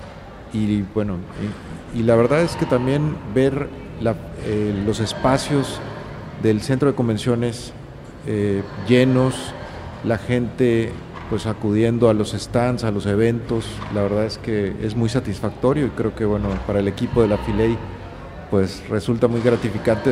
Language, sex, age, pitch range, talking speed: Spanish, male, 40-59, 105-120 Hz, 150 wpm